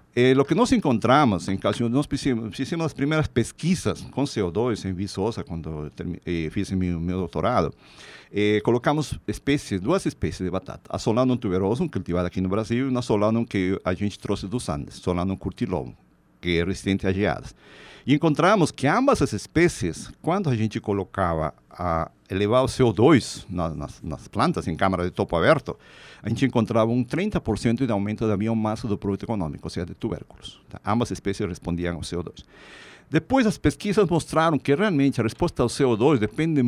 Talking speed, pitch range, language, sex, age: 180 wpm, 95-140 Hz, Portuguese, male, 50-69